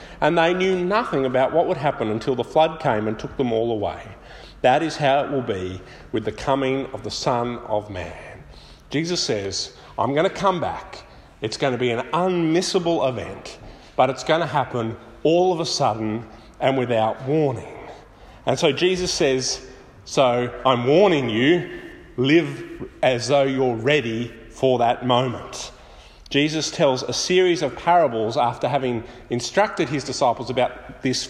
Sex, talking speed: male, 165 wpm